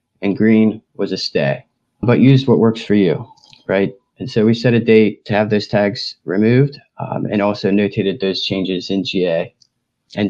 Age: 30-49